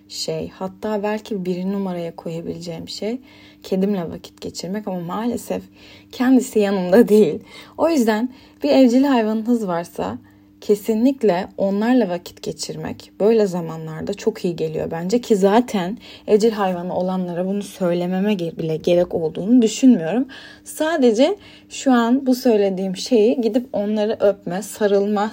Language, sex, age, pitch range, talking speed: Turkish, female, 10-29, 175-240 Hz, 125 wpm